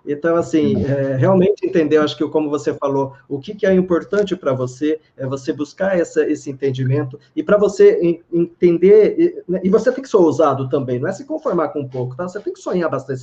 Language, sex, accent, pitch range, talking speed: Portuguese, male, Brazilian, 140-180 Hz, 225 wpm